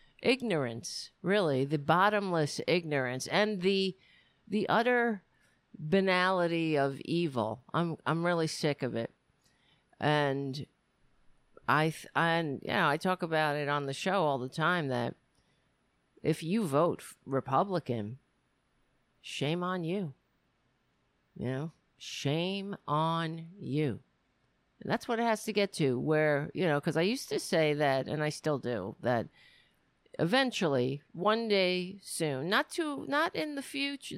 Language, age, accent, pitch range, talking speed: English, 50-69, American, 145-205 Hz, 140 wpm